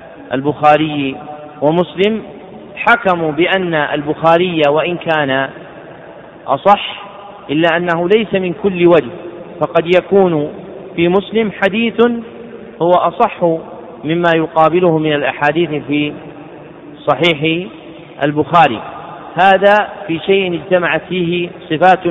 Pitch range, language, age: 155-180 Hz, Arabic, 40-59